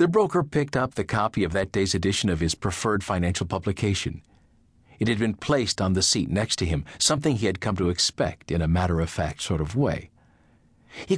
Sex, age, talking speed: male, 50-69, 205 wpm